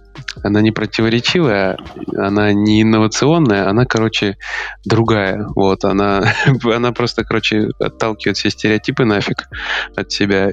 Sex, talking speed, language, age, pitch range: male, 115 wpm, Russian, 20-39, 100-110 Hz